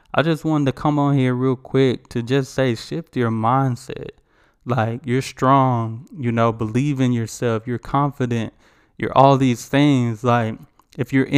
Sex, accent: male, American